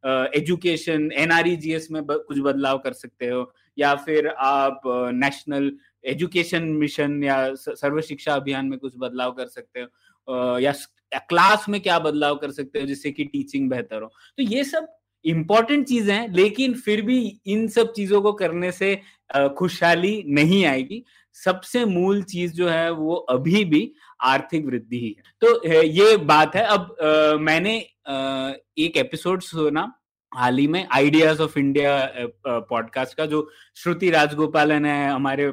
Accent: native